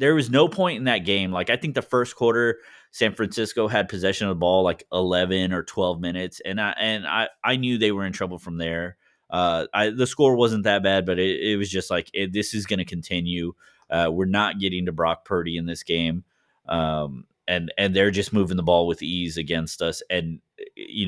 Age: 20-39